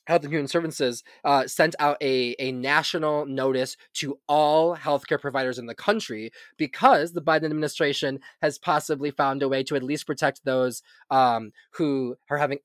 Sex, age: male, 20-39